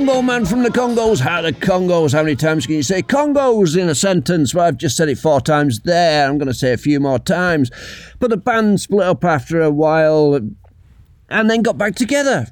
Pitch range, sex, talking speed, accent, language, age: 135-185 Hz, male, 225 wpm, British, English, 50-69